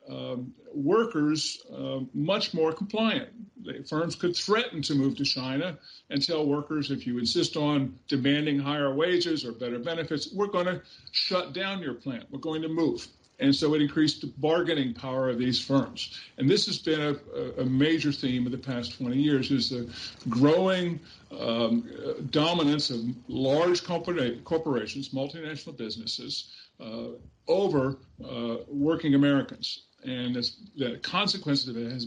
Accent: American